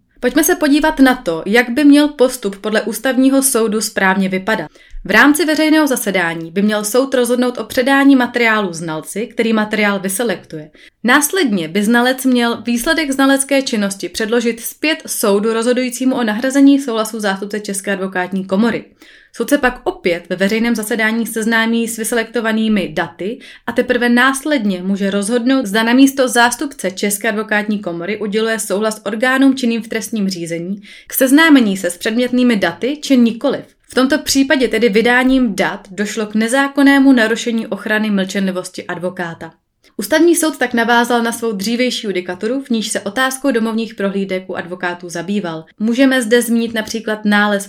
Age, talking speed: 20-39, 150 wpm